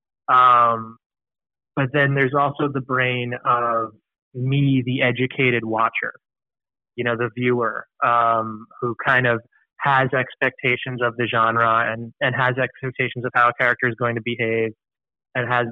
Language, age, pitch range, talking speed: English, 20-39, 120-135 Hz, 150 wpm